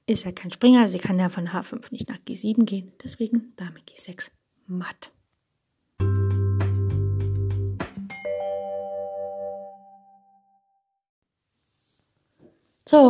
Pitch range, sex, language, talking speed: 180-225 Hz, female, German, 80 wpm